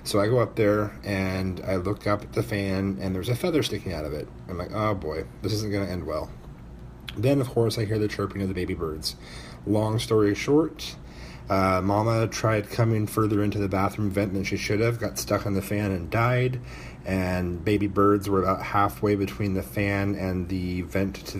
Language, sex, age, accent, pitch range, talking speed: English, male, 30-49, American, 95-110 Hz, 215 wpm